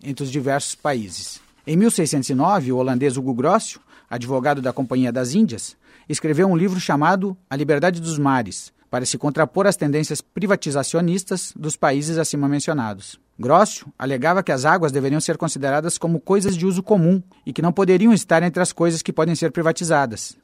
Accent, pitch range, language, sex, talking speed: Brazilian, 130-170 Hz, Portuguese, male, 170 wpm